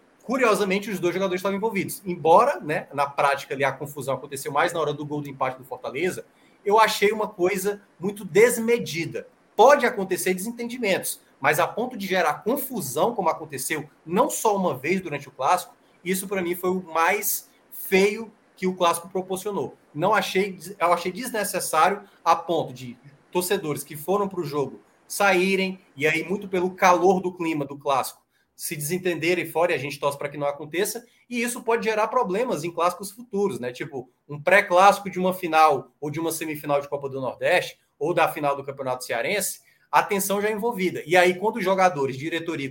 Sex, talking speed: male, 185 wpm